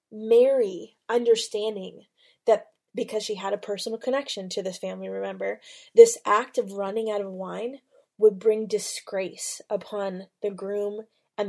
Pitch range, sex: 205-305 Hz, female